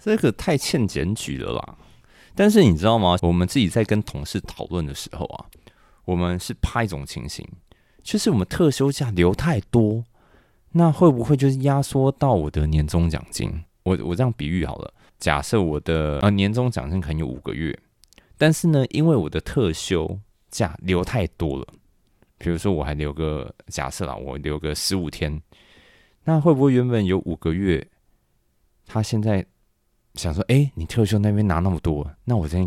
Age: 30-49